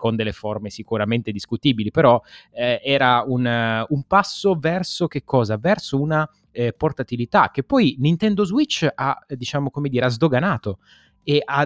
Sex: male